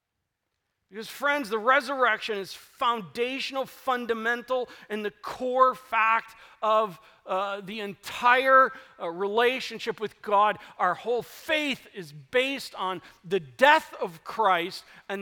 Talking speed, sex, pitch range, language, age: 120 wpm, male, 170-230 Hz, English, 40-59